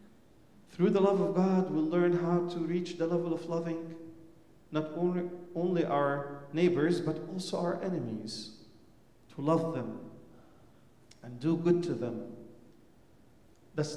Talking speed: 135 wpm